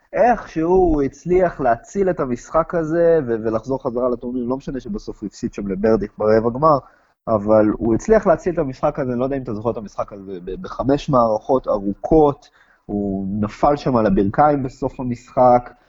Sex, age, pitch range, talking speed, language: male, 30-49, 100-140 Hz, 180 wpm, Hebrew